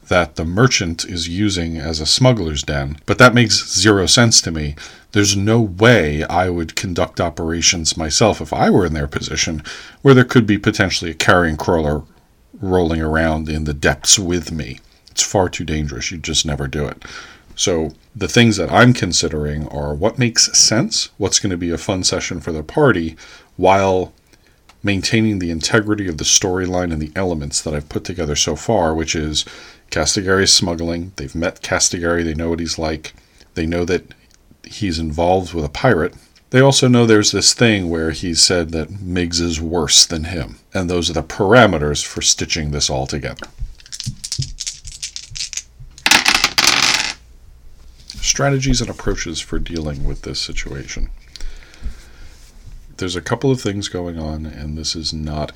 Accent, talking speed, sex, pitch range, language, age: American, 165 wpm, male, 75-100 Hz, English, 40-59